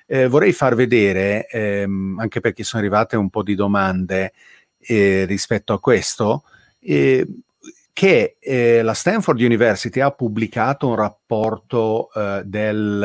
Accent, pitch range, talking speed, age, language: native, 105-125 Hz, 130 wpm, 40-59, Italian